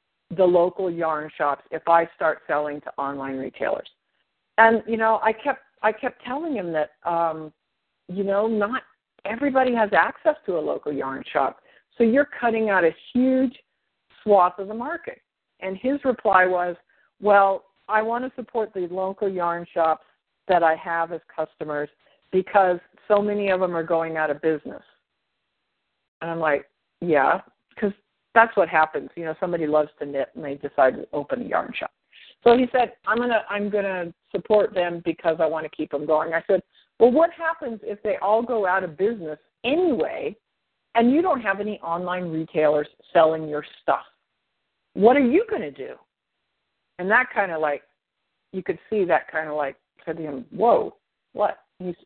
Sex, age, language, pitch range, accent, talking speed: female, 50-69, English, 160-225 Hz, American, 180 wpm